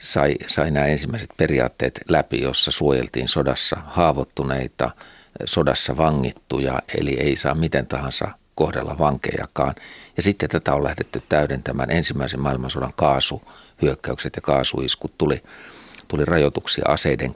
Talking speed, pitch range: 110 wpm, 65-75 Hz